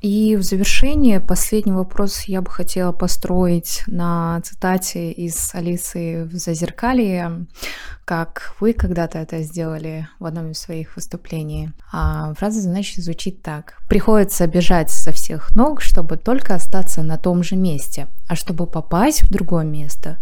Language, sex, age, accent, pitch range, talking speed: Russian, female, 20-39, native, 160-195 Hz, 140 wpm